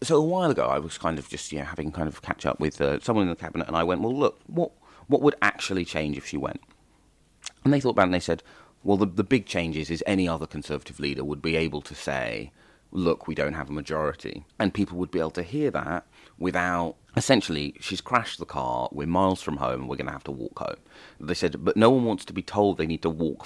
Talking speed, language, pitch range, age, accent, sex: 265 wpm, English, 75-95 Hz, 30-49, British, male